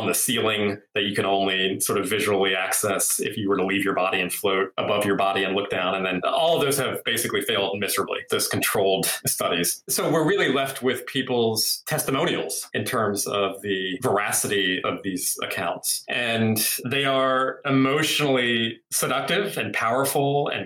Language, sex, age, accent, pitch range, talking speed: English, male, 30-49, American, 95-130 Hz, 175 wpm